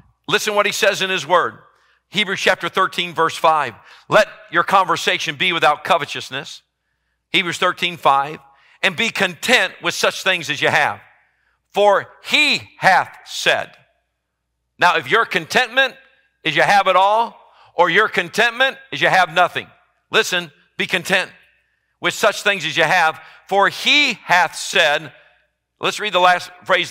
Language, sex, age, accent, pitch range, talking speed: English, male, 50-69, American, 160-200 Hz, 150 wpm